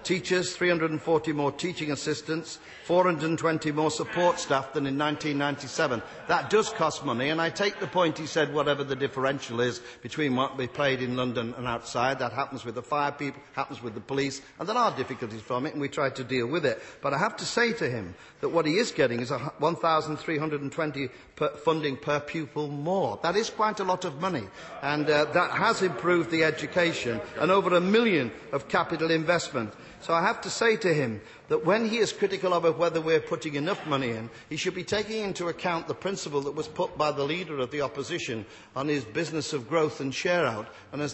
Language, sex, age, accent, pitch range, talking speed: English, male, 50-69, British, 140-175 Hz, 205 wpm